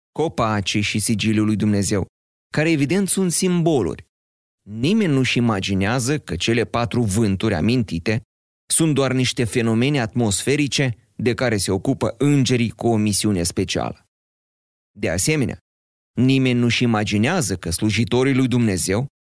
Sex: male